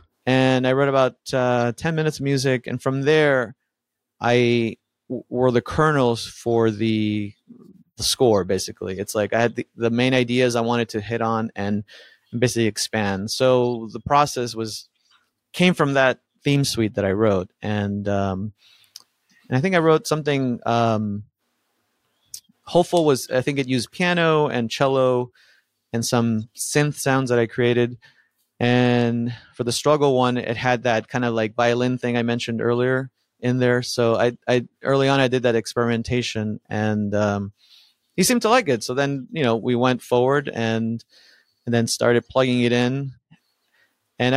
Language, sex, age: English, male, 30-49